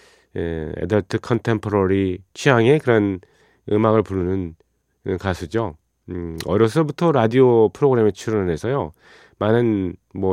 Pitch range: 95-125 Hz